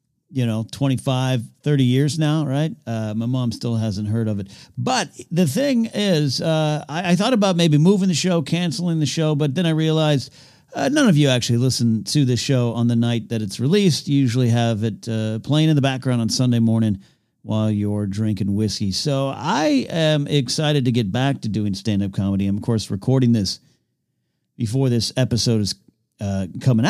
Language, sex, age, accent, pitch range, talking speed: English, male, 50-69, American, 115-160 Hz, 195 wpm